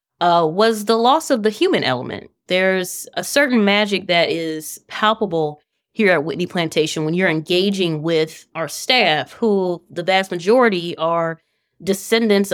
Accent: American